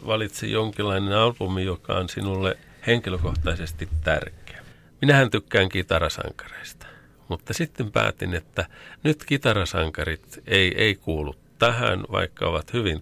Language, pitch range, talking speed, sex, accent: Finnish, 90-120 Hz, 110 wpm, male, native